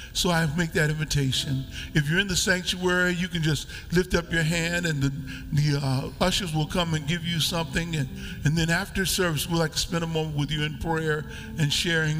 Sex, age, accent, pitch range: male, 50-69, American, 120-160 Hz